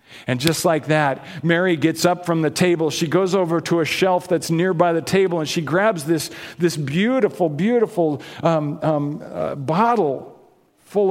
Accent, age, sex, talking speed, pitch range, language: American, 50-69, male, 175 wpm, 150-195 Hz, English